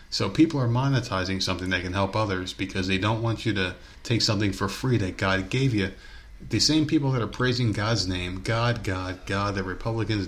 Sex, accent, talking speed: male, American, 210 wpm